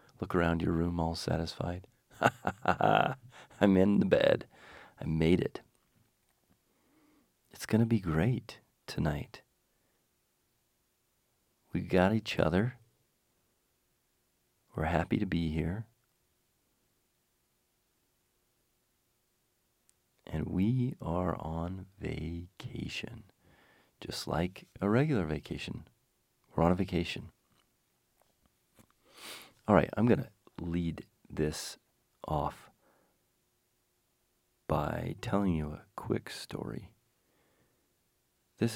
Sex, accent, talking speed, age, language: male, American, 90 wpm, 40-59, English